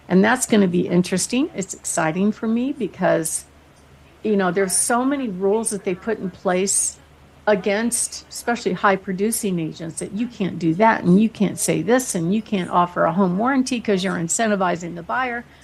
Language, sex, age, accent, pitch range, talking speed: English, female, 50-69, American, 185-230 Hz, 190 wpm